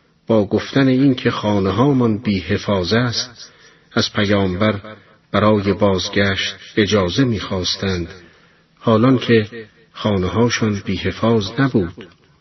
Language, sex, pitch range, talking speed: Persian, male, 95-120 Hz, 80 wpm